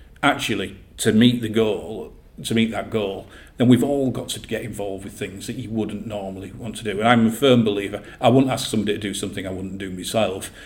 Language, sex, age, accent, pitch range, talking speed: English, male, 50-69, British, 100-115 Hz, 235 wpm